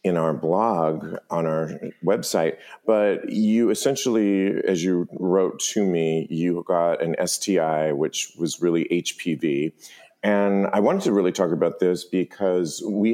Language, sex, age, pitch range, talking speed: English, male, 40-59, 80-95 Hz, 145 wpm